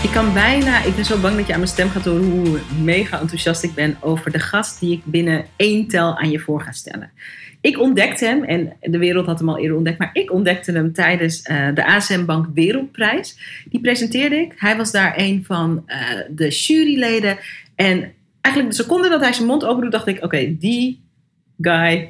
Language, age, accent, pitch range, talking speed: Dutch, 40-59, Dutch, 170-250 Hz, 215 wpm